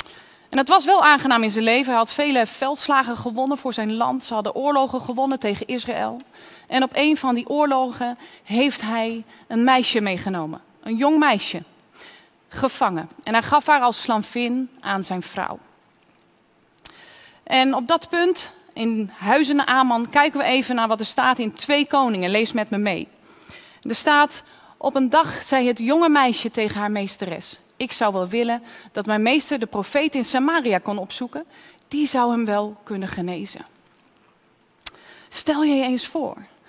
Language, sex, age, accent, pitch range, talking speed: Dutch, female, 30-49, Dutch, 225-285 Hz, 170 wpm